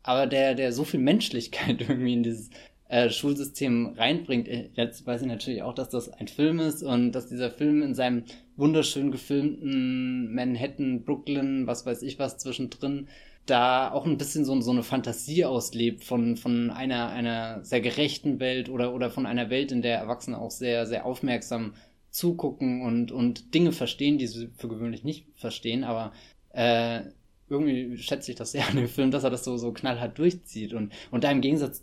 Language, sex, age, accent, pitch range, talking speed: German, male, 20-39, German, 120-140 Hz, 185 wpm